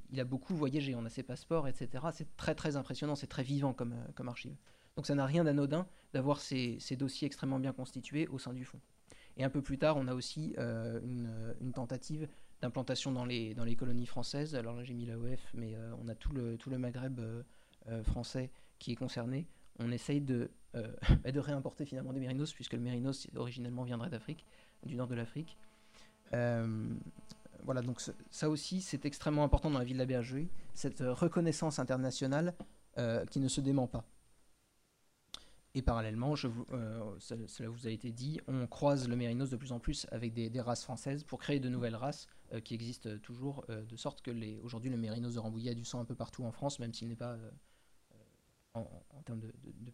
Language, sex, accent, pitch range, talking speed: French, male, French, 120-140 Hz, 215 wpm